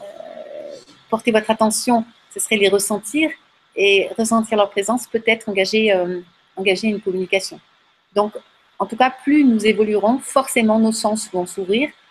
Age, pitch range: 40-59, 200-230 Hz